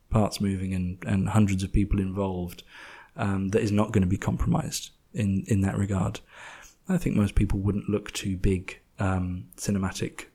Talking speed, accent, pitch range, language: 175 wpm, British, 100-110 Hz, English